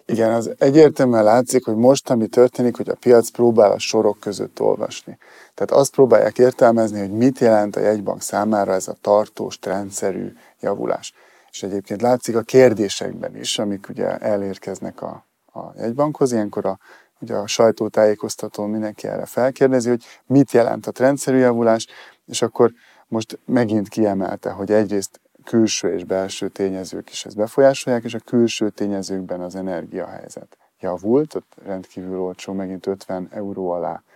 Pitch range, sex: 100-120 Hz, male